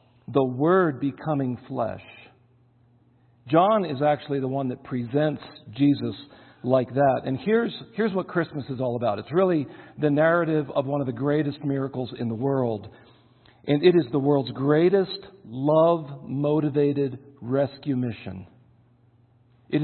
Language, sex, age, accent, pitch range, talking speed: English, male, 50-69, American, 120-150 Hz, 135 wpm